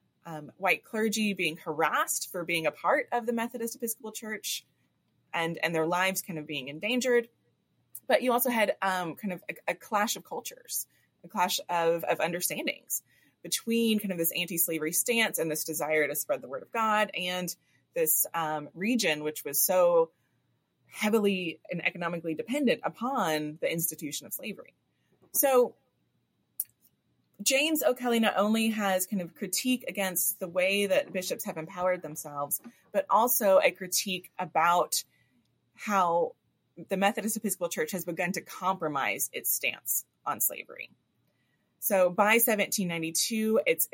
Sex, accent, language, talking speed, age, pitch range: female, American, English, 150 wpm, 20-39, 165-225 Hz